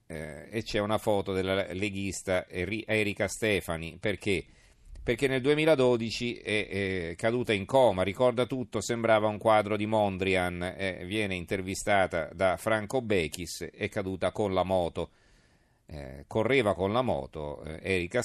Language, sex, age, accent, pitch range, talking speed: Italian, male, 40-59, native, 95-120 Hz, 140 wpm